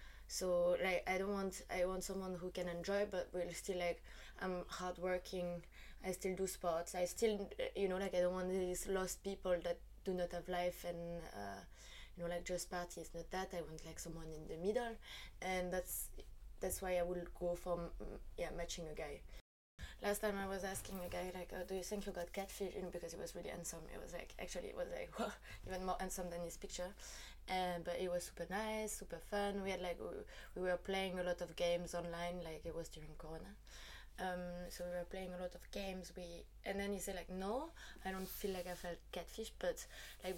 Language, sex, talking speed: French, female, 225 wpm